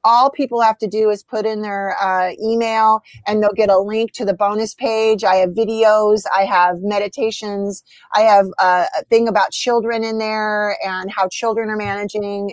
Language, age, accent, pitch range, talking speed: English, 30-49, American, 195-235 Hz, 190 wpm